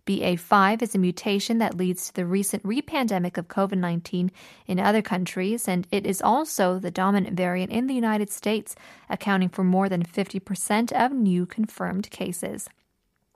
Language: Korean